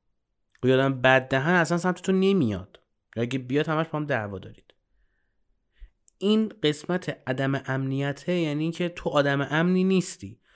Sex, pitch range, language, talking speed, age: male, 110-150 Hz, Persian, 135 wpm, 30-49